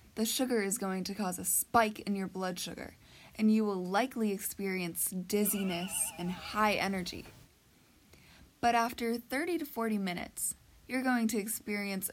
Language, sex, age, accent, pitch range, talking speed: English, female, 20-39, American, 190-230 Hz, 155 wpm